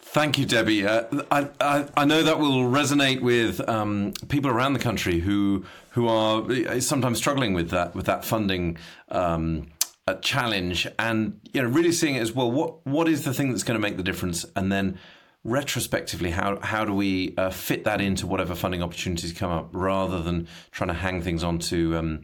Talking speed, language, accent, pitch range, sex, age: 195 wpm, English, British, 95-145 Hz, male, 40-59